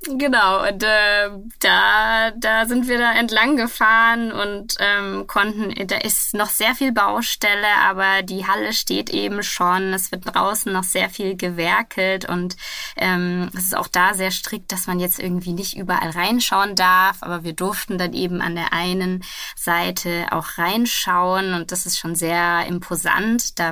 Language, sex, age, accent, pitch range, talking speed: German, female, 20-39, German, 175-215 Hz, 165 wpm